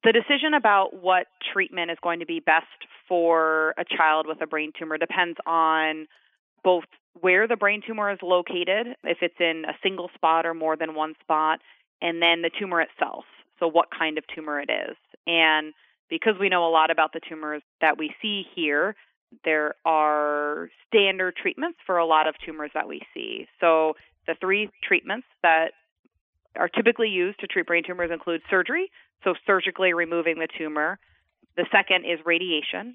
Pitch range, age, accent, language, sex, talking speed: 155-180 Hz, 30-49, American, English, female, 175 wpm